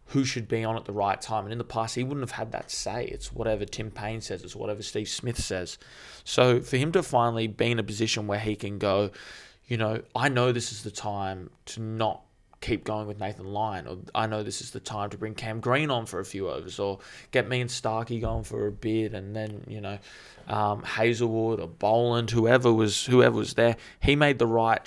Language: English